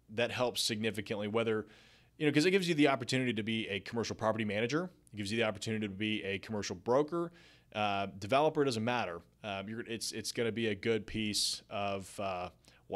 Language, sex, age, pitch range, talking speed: English, male, 30-49, 105-140 Hz, 205 wpm